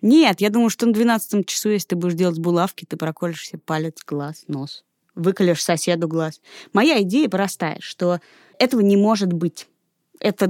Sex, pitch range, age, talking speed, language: female, 165-220 Hz, 20-39, 170 wpm, Russian